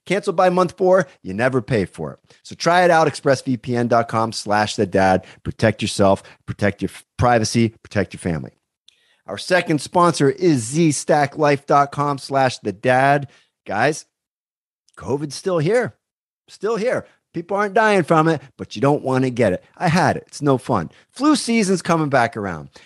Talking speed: 165 wpm